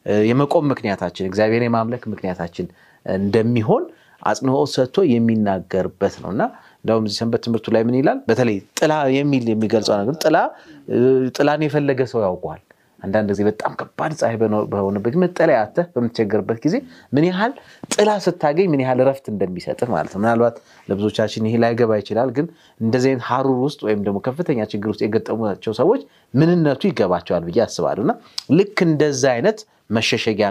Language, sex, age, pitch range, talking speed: Amharic, male, 30-49, 110-145 Hz, 60 wpm